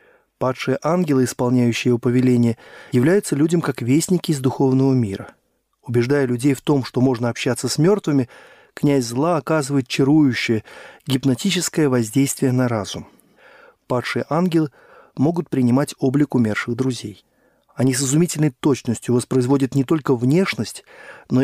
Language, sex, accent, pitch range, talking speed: Russian, male, native, 125-160 Hz, 125 wpm